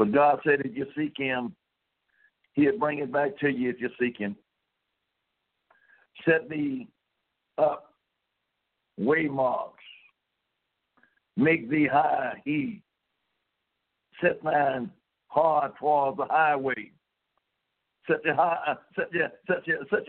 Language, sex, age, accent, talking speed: English, male, 60-79, American, 100 wpm